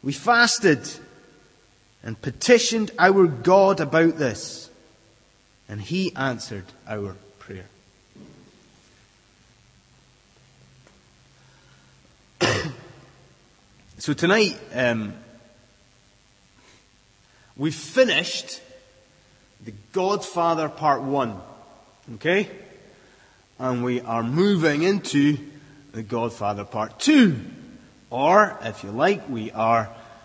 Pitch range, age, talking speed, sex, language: 120-185 Hz, 30-49, 75 wpm, male, English